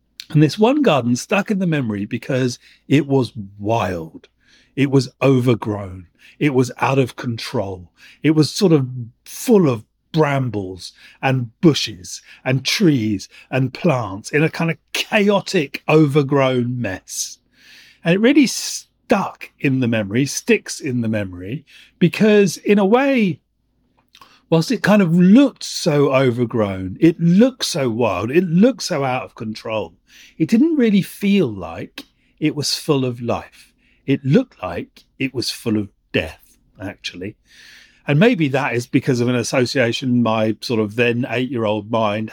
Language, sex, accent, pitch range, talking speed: English, male, British, 115-155 Hz, 150 wpm